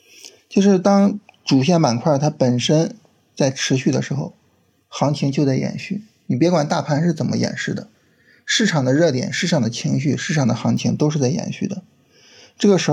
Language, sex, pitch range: Chinese, male, 130-185 Hz